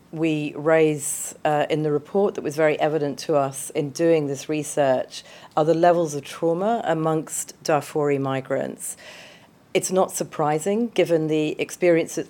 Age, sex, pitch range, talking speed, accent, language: 40-59, female, 145-180 Hz, 145 wpm, British, English